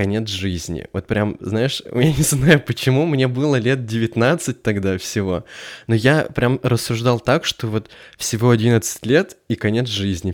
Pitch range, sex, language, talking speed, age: 105-130 Hz, male, Russian, 155 wpm, 20-39